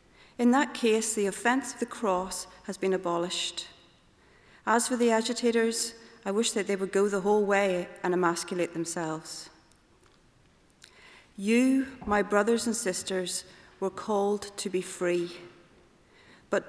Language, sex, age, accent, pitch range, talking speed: English, female, 40-59, British, 185-225 Hz, 135 wpm